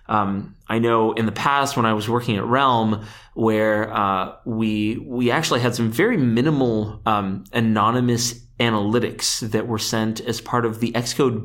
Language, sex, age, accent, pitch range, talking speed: English, male, 30-49, American, 110-125 Hz, 170 wpm